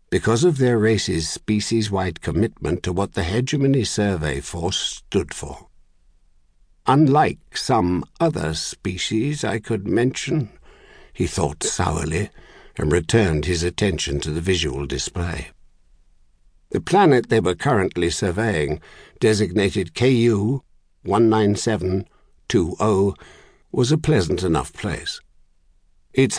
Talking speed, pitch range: 105 wpm, 75-110 Hz